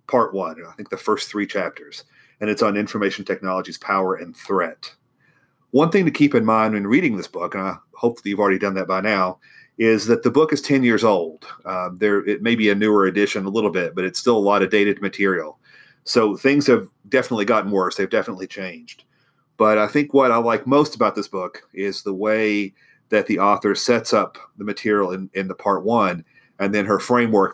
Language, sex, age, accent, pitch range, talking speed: English, male, 40-59, American, 100-120 Hz, 215 wpm